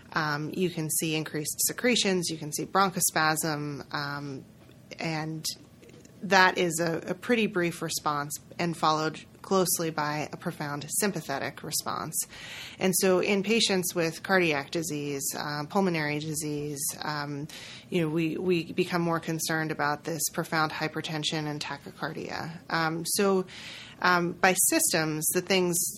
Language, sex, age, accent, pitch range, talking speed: English, female, 20-39, American, 150-175 Hz, 135 wpm